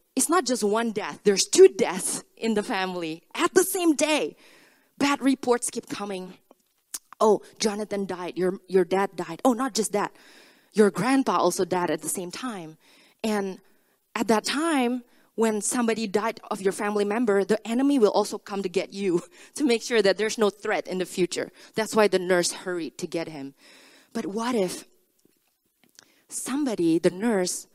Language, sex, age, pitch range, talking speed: English, female, 20-39, 180-230 Hz, 175 wpm